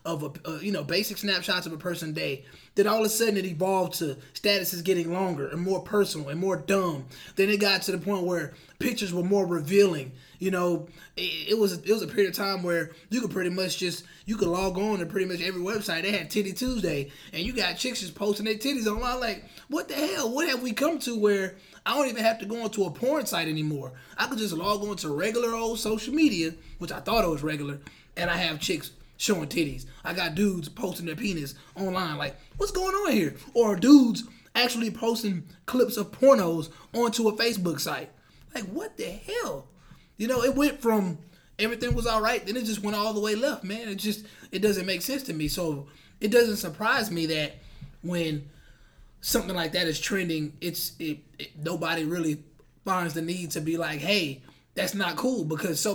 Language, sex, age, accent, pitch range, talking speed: English, male, 20-39, American, 165-215 Hz, 215 wpm